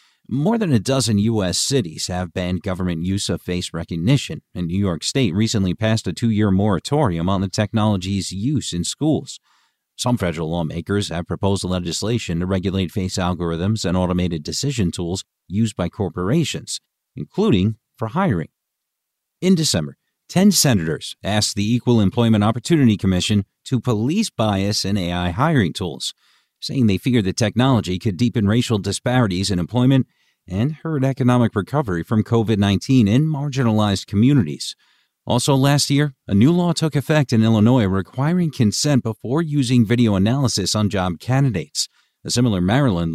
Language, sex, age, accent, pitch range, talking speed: English, male, 40-59, American, 95-125 Hz, 150 wpm